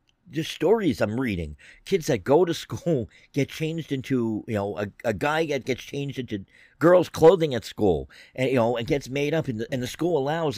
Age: 50-69